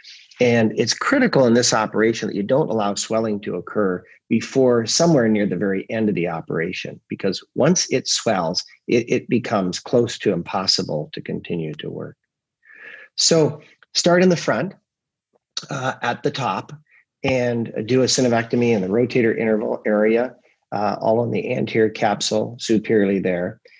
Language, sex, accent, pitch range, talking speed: English, male, American, 110-145 Hz, 155 wpm